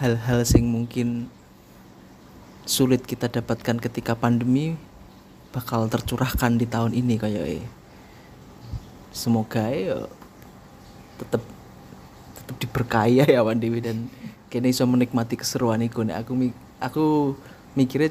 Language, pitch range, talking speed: Indonesian, 110-125 Hz, 95 wpm